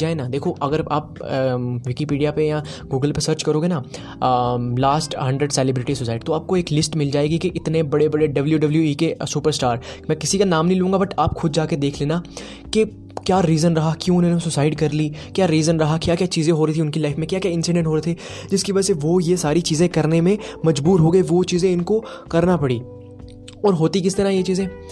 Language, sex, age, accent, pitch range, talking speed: Hindi, male, 20-39, native, 140-170 Hz, 225 wpm